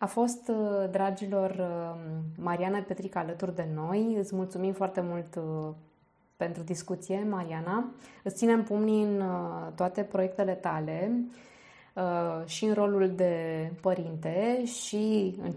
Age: 20-39